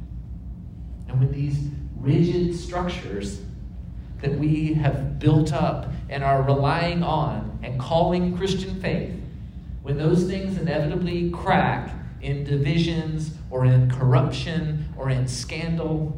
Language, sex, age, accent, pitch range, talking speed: English, male, 40-59, American, 125-155 Hz, 115 wpm